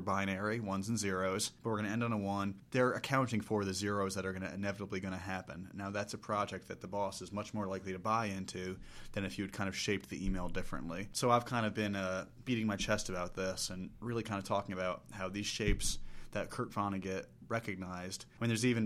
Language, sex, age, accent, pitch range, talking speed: English, male, 30-49, American, 95-110 Hz, 250 wpm